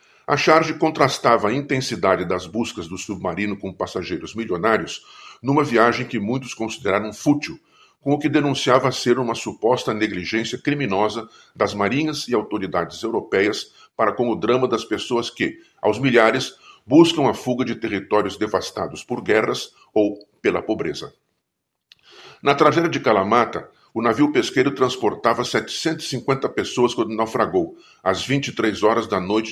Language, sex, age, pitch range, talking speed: Portuguese, male, 50-69, 110-145 Hz, 140 wpm